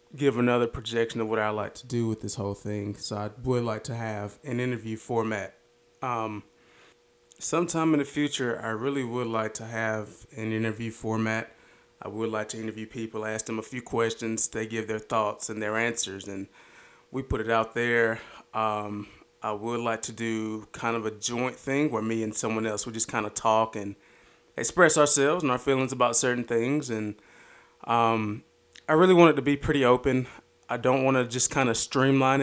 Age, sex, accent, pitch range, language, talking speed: 20-39, male, American, 110-125 Hz, English, 200 wpm